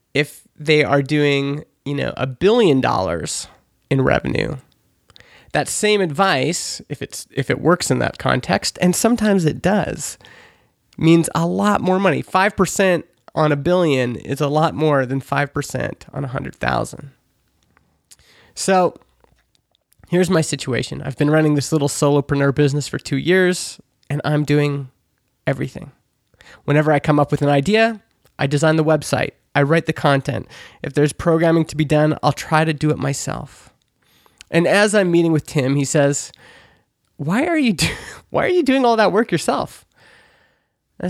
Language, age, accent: English, 20-39, American